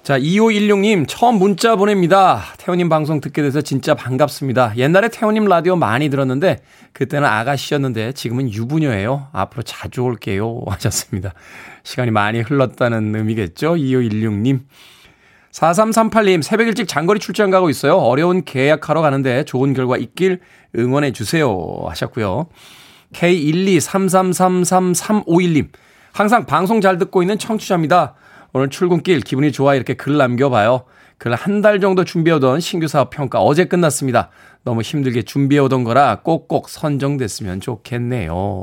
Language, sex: Korean, male